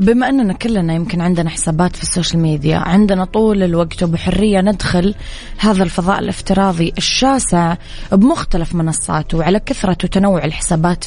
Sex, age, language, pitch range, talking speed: female, 20-39, English, 170-200 Hz, 130 wpm